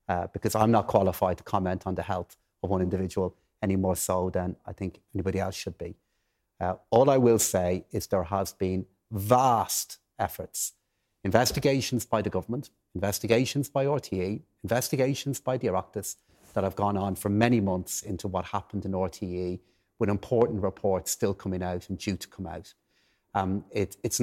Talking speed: 175 wpm